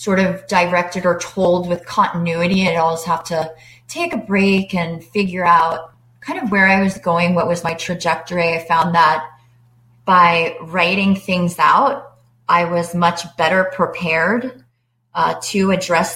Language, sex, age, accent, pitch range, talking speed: English, female, 20-39, American, 165-195 Hz, 155 wpm